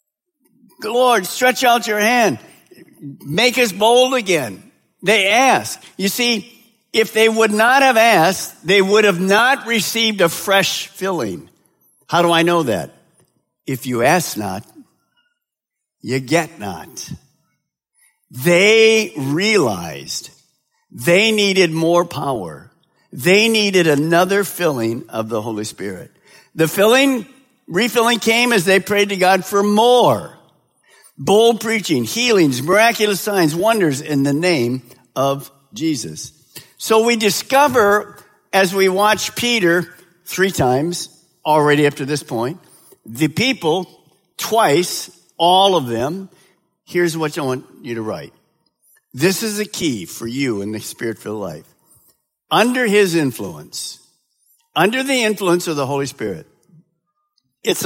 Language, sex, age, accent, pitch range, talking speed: English, male, 60-79, American, 155-225 Hz, 130 wpm